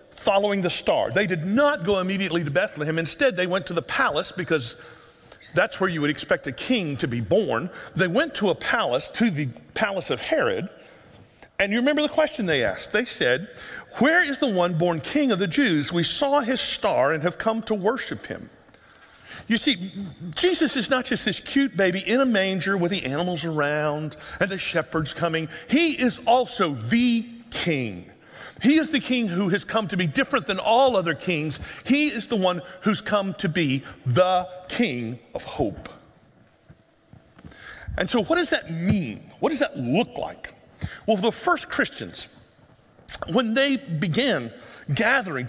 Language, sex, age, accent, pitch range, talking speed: English, male, 50-69, American, 165-245 Hz, 180 wpm